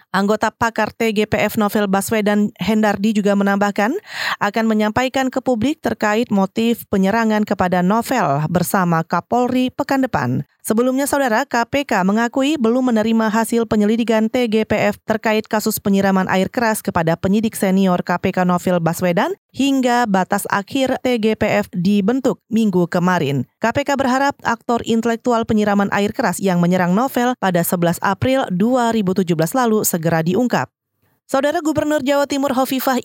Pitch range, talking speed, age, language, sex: 195-235 Hz, 125 wpm, 20-39, Indonesian, female